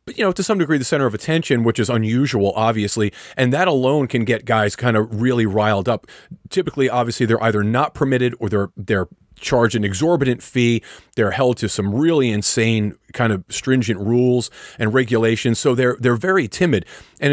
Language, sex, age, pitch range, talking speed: English, male, 40-59, 115-155 Hz, 195 wpm